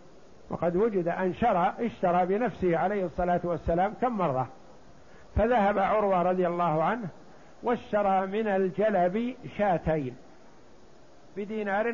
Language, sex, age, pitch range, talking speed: Arabic, male, 60-79, 180-220 Hz, 105 wpm